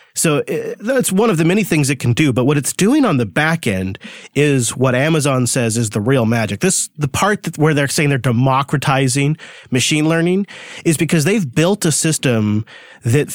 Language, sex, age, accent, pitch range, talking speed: English, male, 30-49, American, 130-165 Hz, 195 wpm